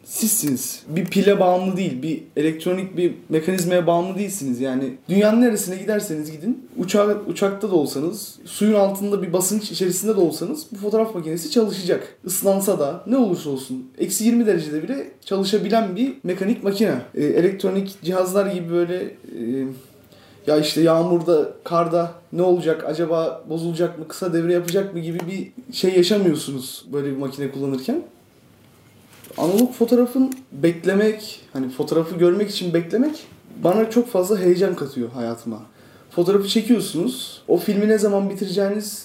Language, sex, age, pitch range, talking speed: Turkish, male, 30-49, 155-205 Hz, 140 wpm